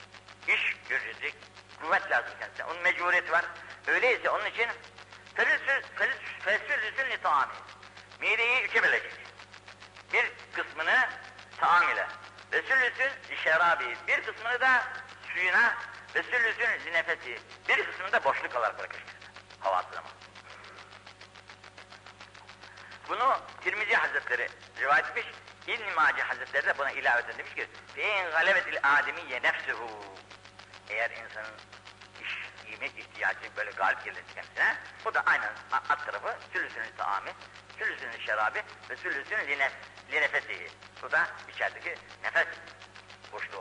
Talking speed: 100 wpm